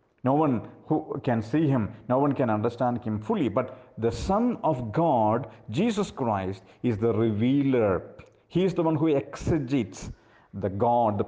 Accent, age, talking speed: Indian, 50-69, 165 wpm